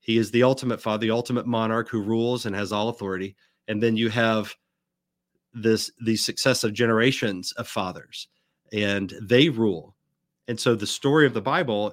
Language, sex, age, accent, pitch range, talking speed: English, male, 40-59, American, 110-130 Hz, 170 wpm